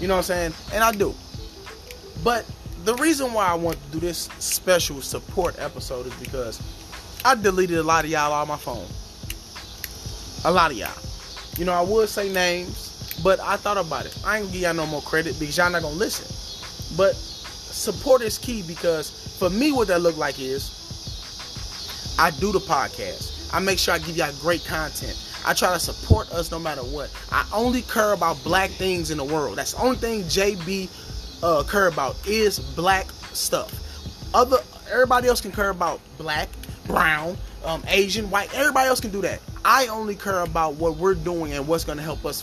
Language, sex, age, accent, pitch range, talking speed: English, male, 20-39, American, 155-210 Hz, 200 wpm